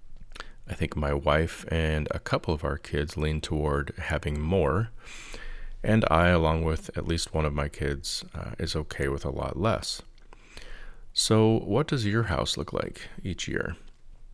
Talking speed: 165 wpm